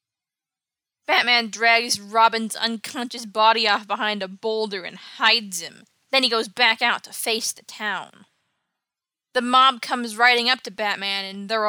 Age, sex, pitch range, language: 20-39, female, 215-255 Hz, English